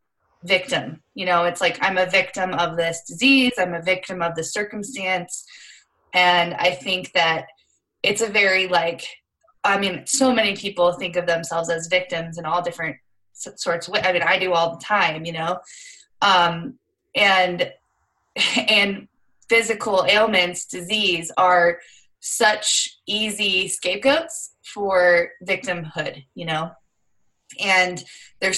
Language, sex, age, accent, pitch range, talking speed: English, female, 20-39, American, 170-215 Hz, 135 wpm